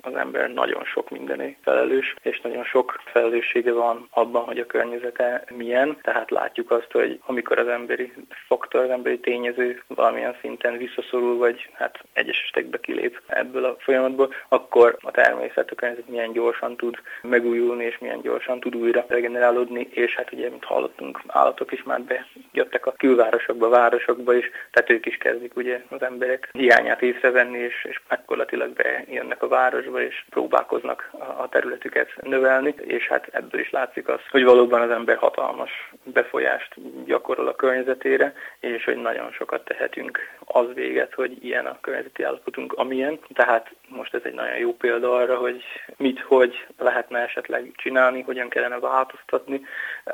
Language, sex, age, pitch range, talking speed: Hungarian, male, 20-39, 120-135 Hz, 160 wpm